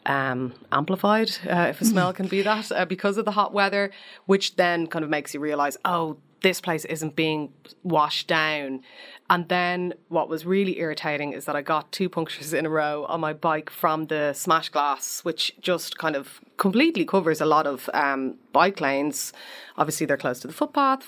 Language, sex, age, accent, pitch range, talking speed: English, female, 30-49, Irish, 140-190 Hz, 195 wpm